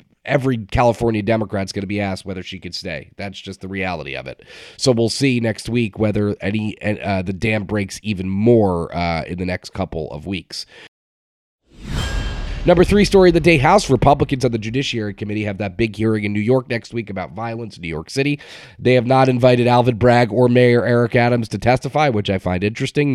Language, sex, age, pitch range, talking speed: English, male, 30-49, 100-120 Hz, 210 wpm